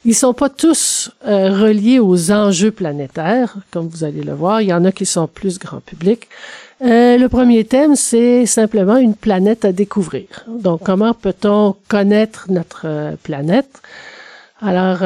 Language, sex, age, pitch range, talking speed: French, male, 50-69, 180-215 Hz, 160 wpm